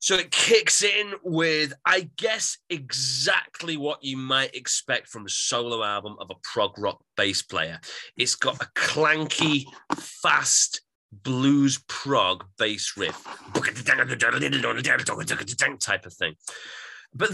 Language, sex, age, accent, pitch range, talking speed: English, male, 30-49, British, 120-175 Hz, 120 wpm